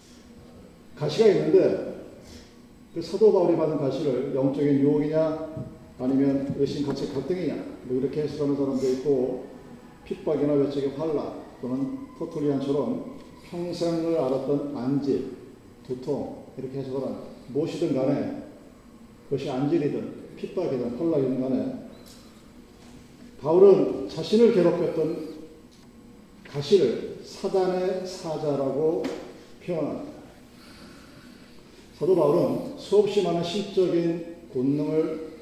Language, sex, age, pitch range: Korean, male, 40-59, 140-195 Hz